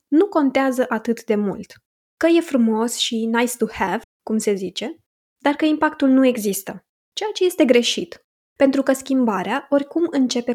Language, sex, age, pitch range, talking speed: Romanian, female, 20-39, 215-280 Hz, 165 wpm